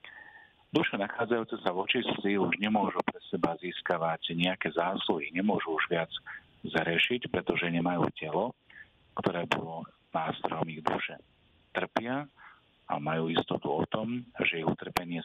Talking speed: 130 wpm